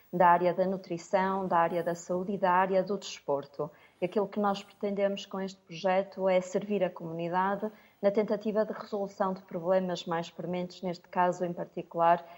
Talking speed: 180 wpm